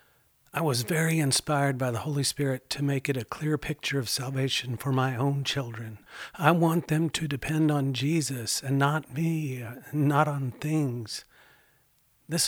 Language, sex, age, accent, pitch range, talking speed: English, male, 50-69, American, 130-150 Hz, 165 wpm